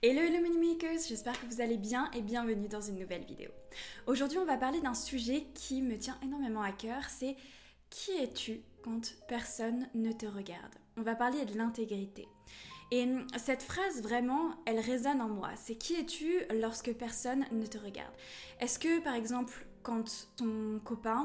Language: French